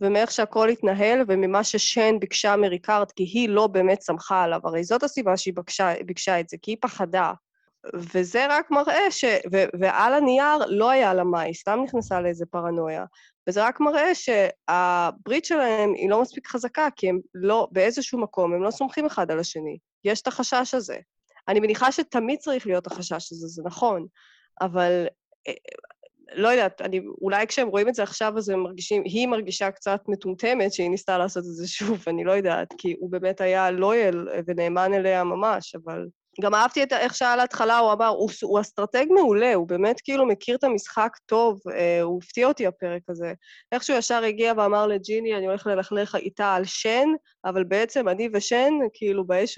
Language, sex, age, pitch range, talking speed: Hebrew, female, 20-39, 185-240 Hz, 180 wpm